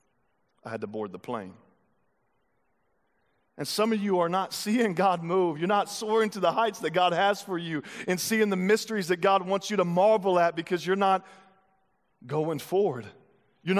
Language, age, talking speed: English, 40-59, 185 wpm